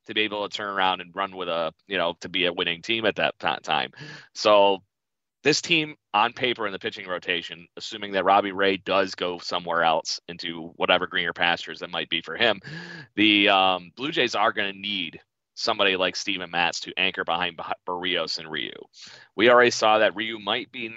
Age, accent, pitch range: 30-49, American, 90-105 Hz